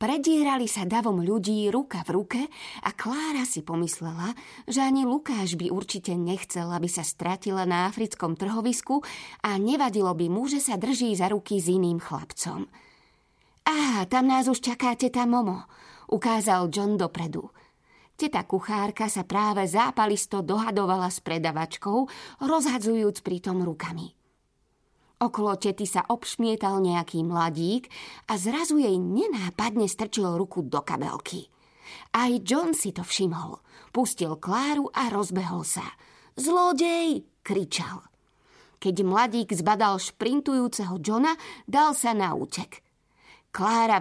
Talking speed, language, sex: 125 wpm, Slovak, female